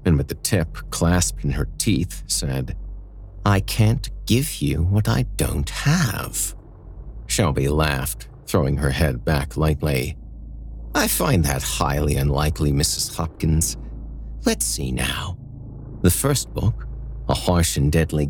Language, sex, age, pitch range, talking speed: English, male, 50-69, 70-105 Hz, 135 wpm